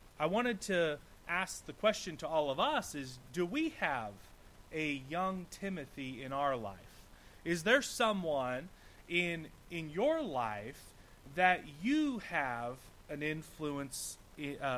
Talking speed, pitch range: 130 wpm, 140-185 Hz